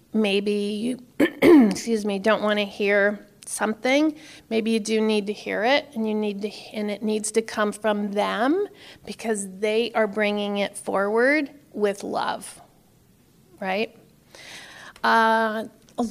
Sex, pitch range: female, 210-240 Hz